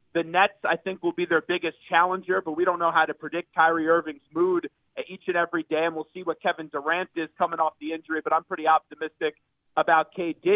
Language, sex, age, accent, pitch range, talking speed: English, male, 40-59, American, 165-195 Hz, 225 wpm